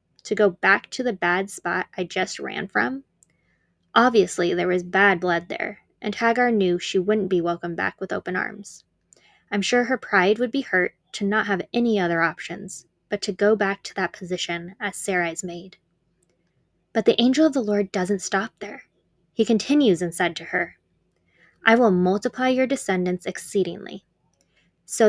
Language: English